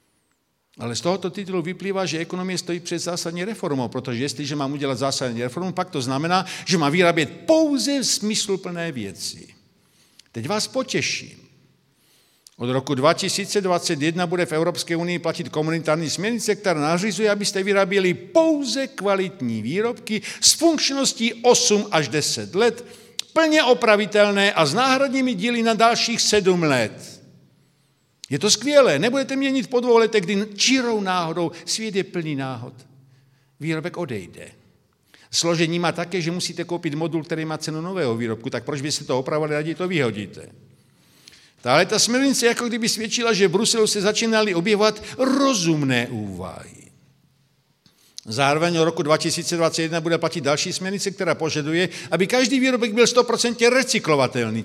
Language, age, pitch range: Czech, 50-69, 155-220 Hz